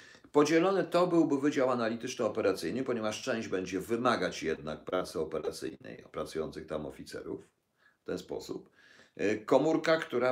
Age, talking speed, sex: 50-69, 115 wpm, male